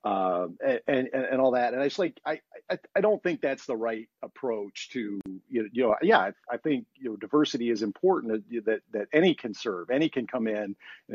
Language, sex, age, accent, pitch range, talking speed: English, male, 40-59, American, 105-135 Hz, 235 wpm